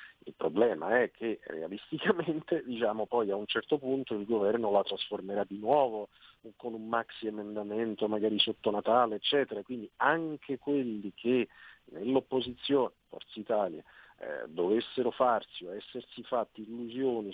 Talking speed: 135 wpm